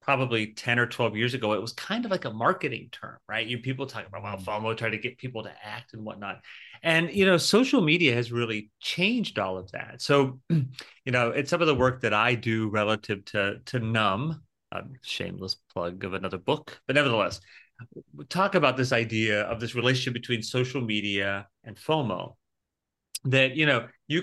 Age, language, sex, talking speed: 30-49, English, male, 200 wpm